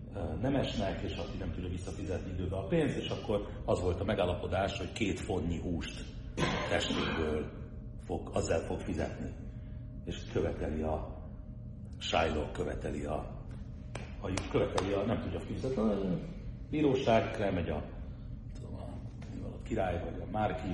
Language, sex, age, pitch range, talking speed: Hungarian, male, 60-79, 90-120 Hz, 135 wpm